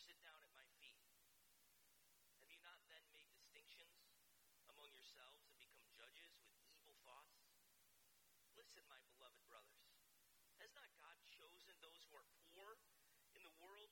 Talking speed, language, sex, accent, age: 145 wpm, English, male, American, 40-59